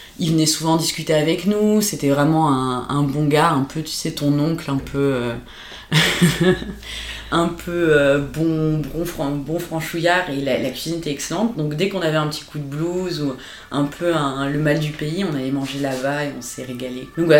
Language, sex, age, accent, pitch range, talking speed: French, female, 20-39, French, 145-170 Hz, 205 wpm